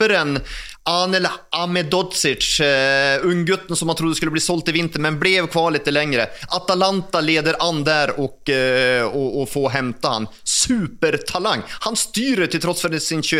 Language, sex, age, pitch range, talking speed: English, male, 30-49, 140-185 Hz, 170 wpm